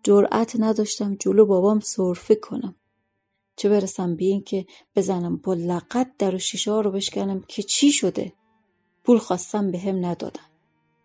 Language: Persian